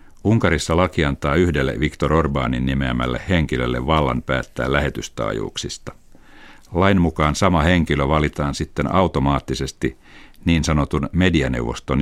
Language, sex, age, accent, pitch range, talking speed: Finnish, male, 60-79, native, 65-85 Hz, 105 wpm